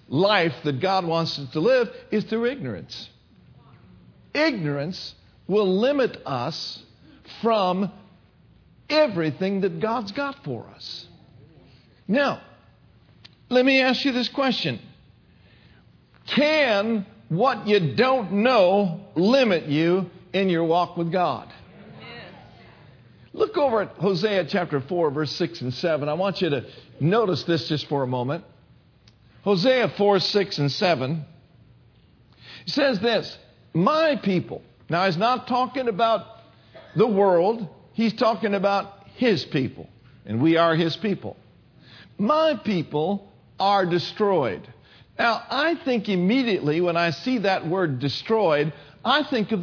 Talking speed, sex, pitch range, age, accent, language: 125 wpm, male, 165-230 Hz, 50-69, American, English